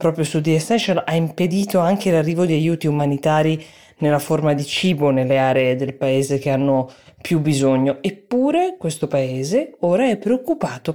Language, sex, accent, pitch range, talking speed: Italian, female, native, 140-185 Hz, 160 wpm